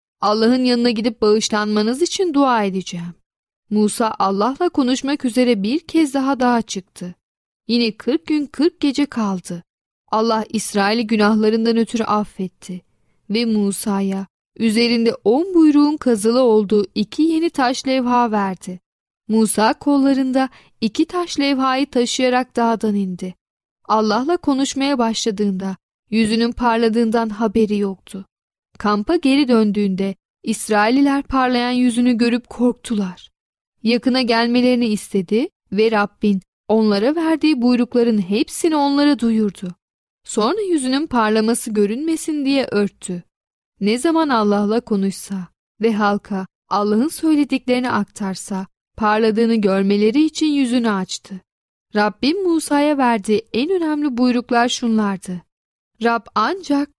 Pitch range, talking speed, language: 210-265 Hz, 105 wpm, Turkish